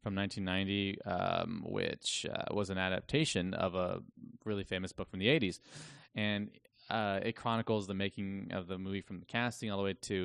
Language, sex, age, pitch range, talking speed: English, male, 20-39, 95-105 Hz, 185 wpm